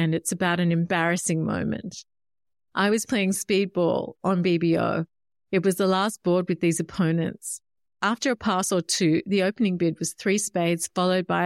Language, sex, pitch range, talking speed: English, female, 175-225 Hz, 175 wpm